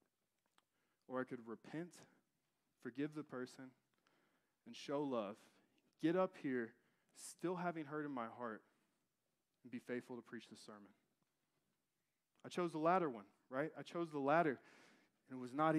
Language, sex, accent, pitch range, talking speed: English, male, American, 120-145 Hz, 150 wpm